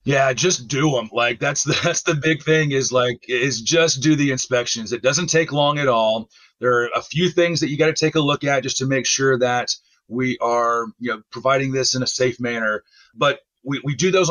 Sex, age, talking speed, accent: male, 40-59, 240 wpm, American